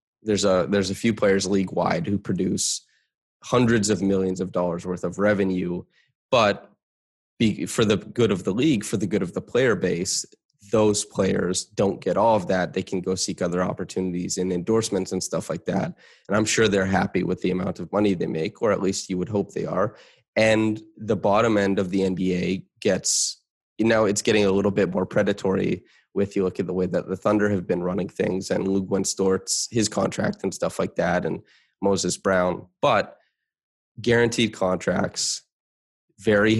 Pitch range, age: 90-105 Hz, 20-39